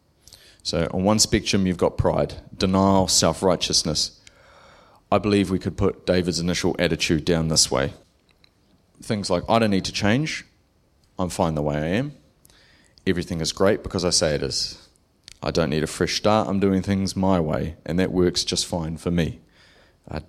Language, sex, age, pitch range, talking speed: English, male, 30-49, 85-100 Hz, 175 wpm